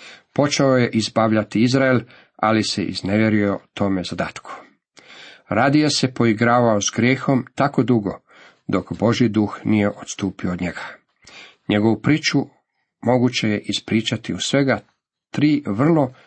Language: Croatian